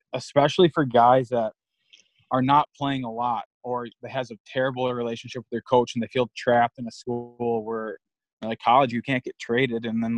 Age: 20-39